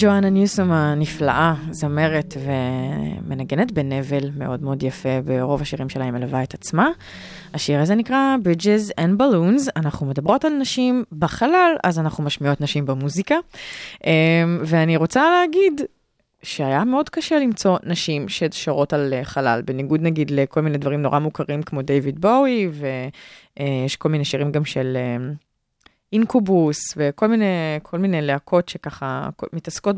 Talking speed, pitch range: 135 wpm, 140-210 Hz